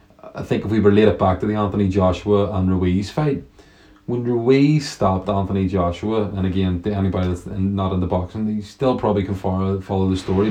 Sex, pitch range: male, 95-105 Hz